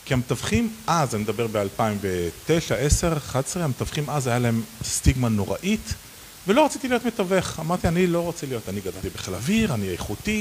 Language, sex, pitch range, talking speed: Hebrew, male, 110-165 Hz, 165 wpm